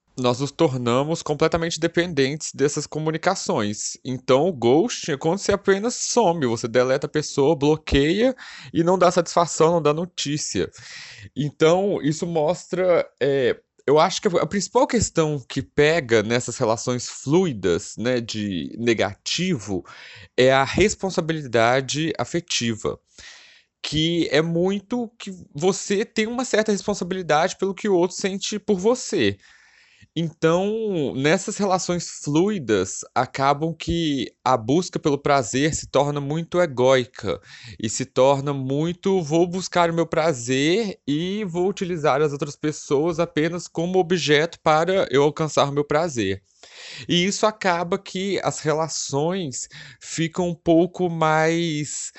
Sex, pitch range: male, 135-185 Hz